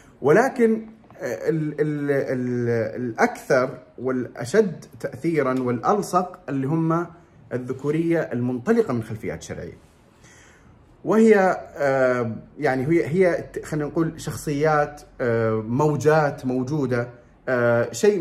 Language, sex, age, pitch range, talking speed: Arabic, male, 30-49, 130-170 Hz, 90 wpm